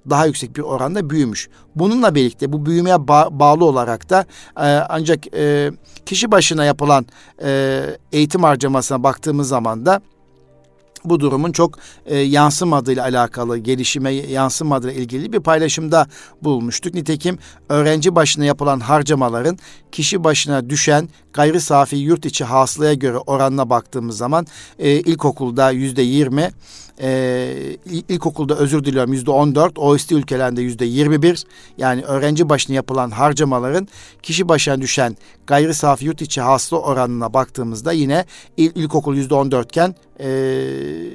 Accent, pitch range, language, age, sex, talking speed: native, 130-155 Hz, Turkish, 50-69, male, 125 wpm